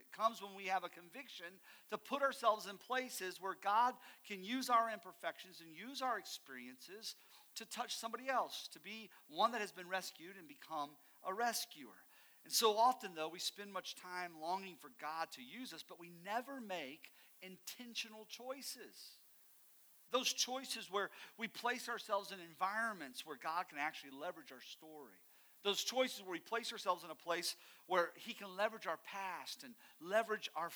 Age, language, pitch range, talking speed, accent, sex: 50-69, English, 175-235 Hz, 175 wpm, American, male